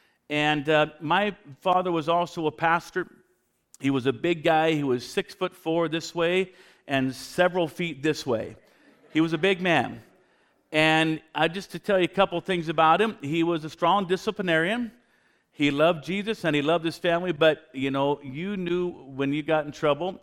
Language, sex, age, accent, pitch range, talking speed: English, male, 50-69, American, 145-180 Hz, 185 wpm